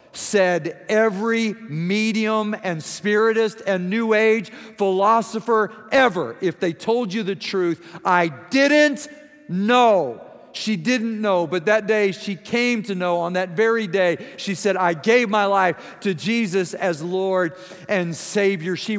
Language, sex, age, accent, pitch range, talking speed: English, male, 50-69, American, 160-215 Hz, 145 wpm